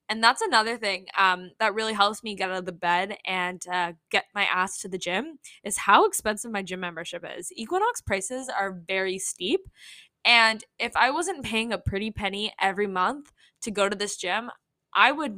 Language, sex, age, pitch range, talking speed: English, female, 10-29, 190-235 Hz, 200 wpm